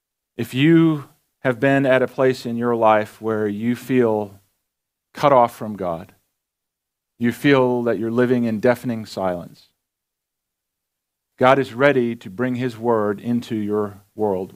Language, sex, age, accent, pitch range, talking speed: English, male, 40-59, American, 100-130 Hz, 145 wpm